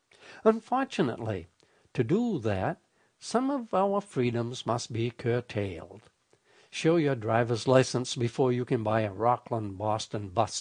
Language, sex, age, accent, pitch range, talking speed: English, male, 60-79, American, 120-180 Hz, 125 wpm